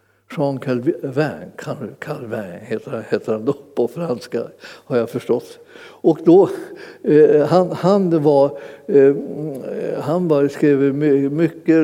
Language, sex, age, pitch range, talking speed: Swedish, male, 60-79, 135-165 Hz, 115 wpm